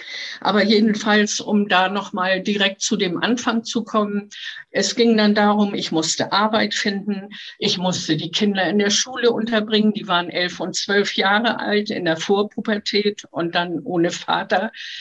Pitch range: 195-230 Hz